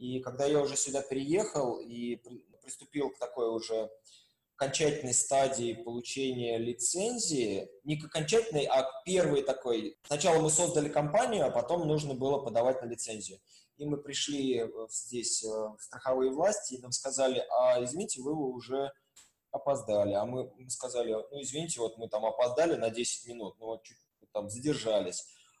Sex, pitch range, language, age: male, 115-150 Hz, Russian, 20-39